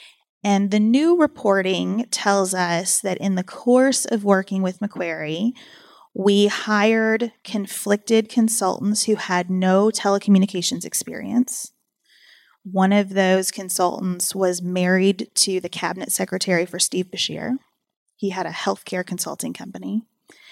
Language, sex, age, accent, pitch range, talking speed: English, female, 30-49, American, 185-230 Hz, 125 wpm